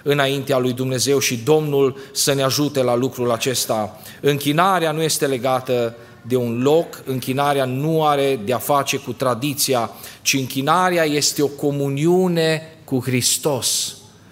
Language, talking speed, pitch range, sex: Romanian, 135 wpm, 120-145 Hz, male